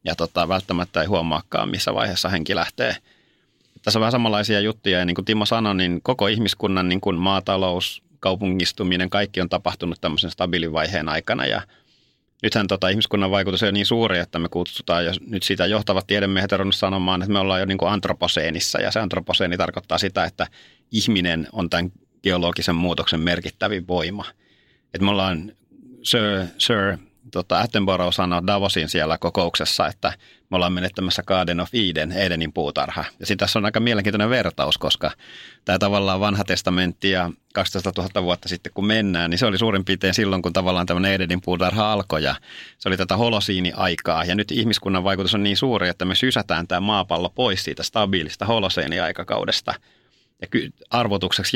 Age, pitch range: 30-49, 90-105 Hz